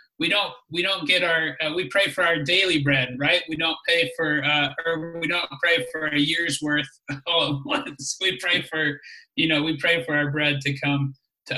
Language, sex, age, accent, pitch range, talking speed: English, male, 30-49, American, 140-165 Hz, 220 wpm